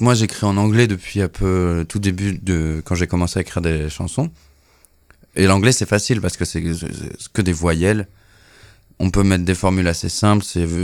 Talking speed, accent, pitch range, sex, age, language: 200 wpm, French, 90-105 Hz, male, 20-39, French